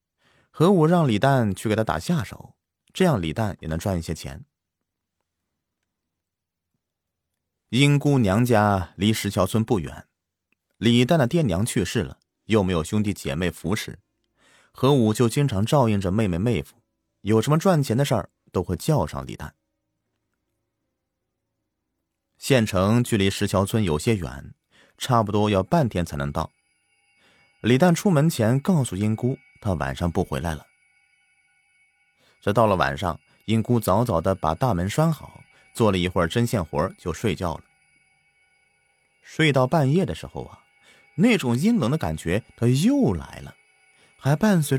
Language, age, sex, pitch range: Chinese, 30-49, male, 90-145 Hz